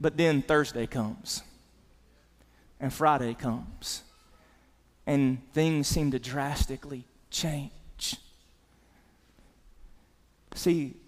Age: 30-49